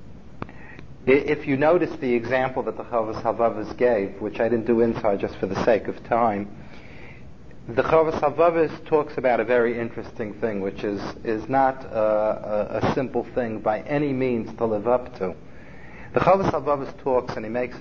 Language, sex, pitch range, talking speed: English, male, 115-130 Hz, 170 wpm